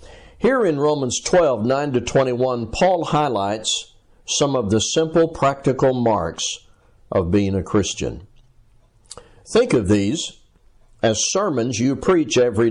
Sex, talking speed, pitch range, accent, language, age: male, 120 wpm, 105-150 Hz, American, English, 60-79